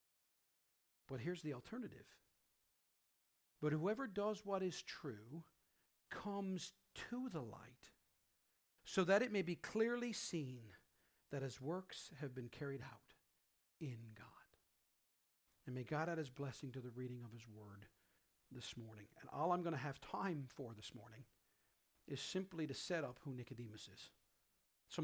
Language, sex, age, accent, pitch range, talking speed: English, male, 50-69, American, 135-195 Hz, 150 wpm